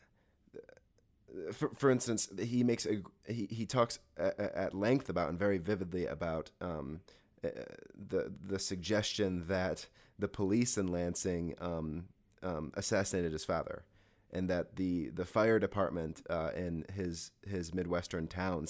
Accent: American